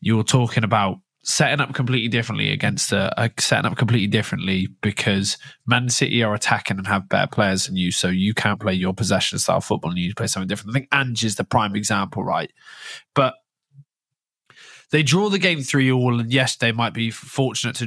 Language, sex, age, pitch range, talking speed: English, male, 20-39, 115-145 Hz, 210 wpm